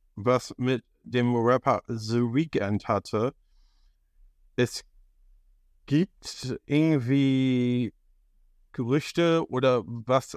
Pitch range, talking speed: 110-130 Hz, 75 wpm